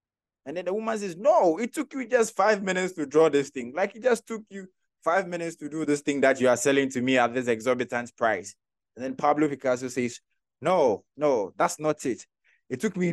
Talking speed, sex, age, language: 230 wpm, male, 20-39, English